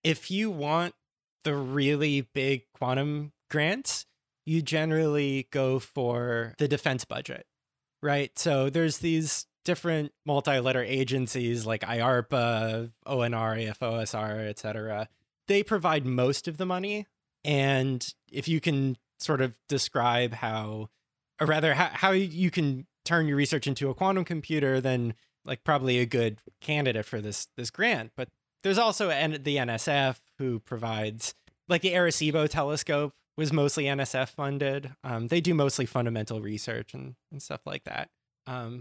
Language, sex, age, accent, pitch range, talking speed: English, male, 20-39, American, 120-155 Hz, 140 wpm